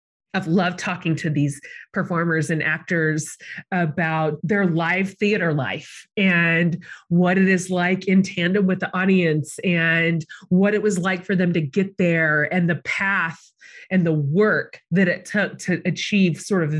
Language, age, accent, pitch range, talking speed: English, 30-49, American, 155-190 Hz, 165 wpm